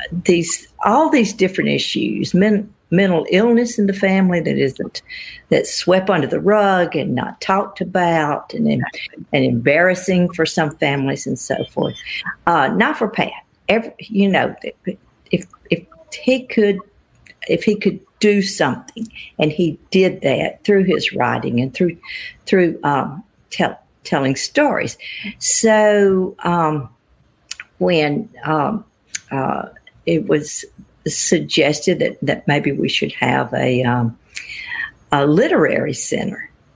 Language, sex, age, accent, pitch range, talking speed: English, female, 50-69, American, 135-200 Hz, 130 wpm